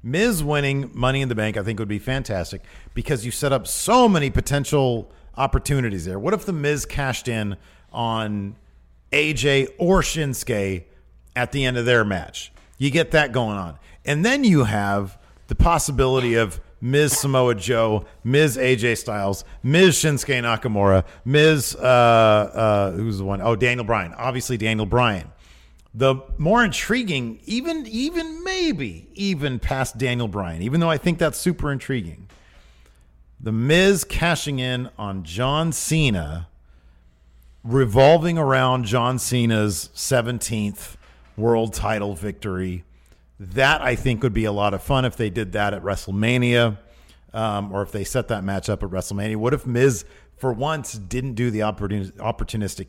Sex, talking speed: male, 155 wpm